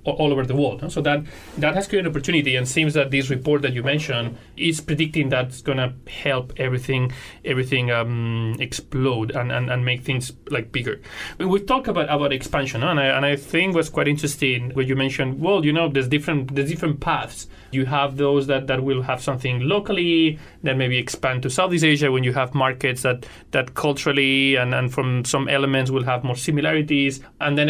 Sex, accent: male, Spanish